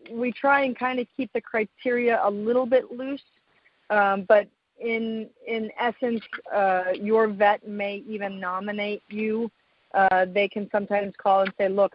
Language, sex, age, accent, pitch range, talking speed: English, female, 40-59, American, 190-220 Hz, 160 wpm